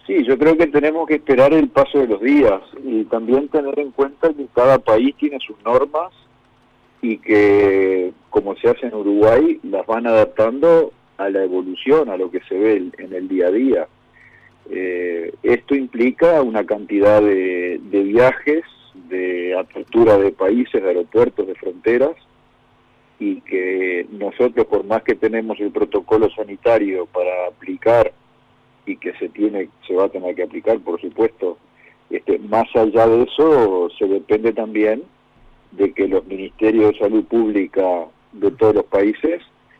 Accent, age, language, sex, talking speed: Argentinian, 50-69, Spanish, male, 160 wpm